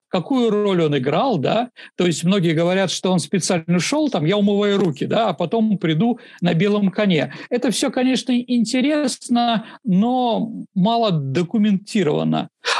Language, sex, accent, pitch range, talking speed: Russian, male, native, 175-230 Hz, 145 wpm